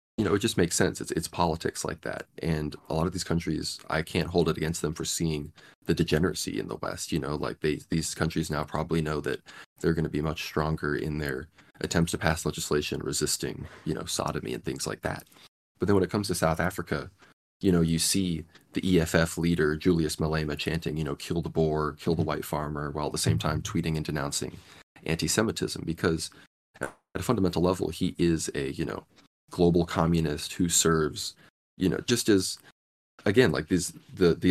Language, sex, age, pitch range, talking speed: English, male, 20-39, 75-85 Hz, 205 wpm